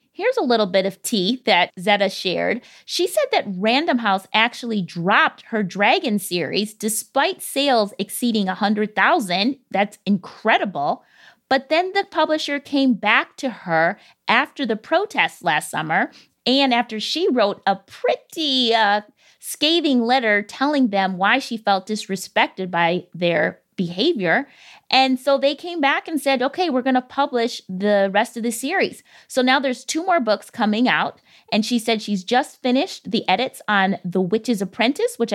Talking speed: 160 wpm